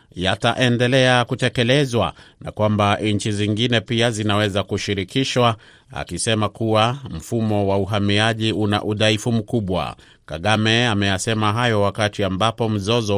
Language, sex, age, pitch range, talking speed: Swahili, male, 30-49, 100-115 Hz, 105 wpm